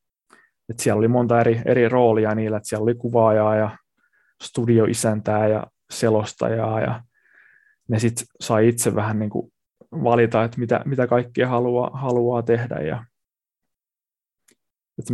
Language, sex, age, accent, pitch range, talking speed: Finnish, male, 20-39, native, 115-125 Hz, 125 wpm